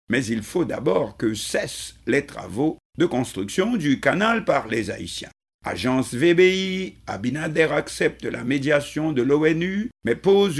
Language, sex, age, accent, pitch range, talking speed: French, male, 50-69, French, 120-190 Hz, 140 wpm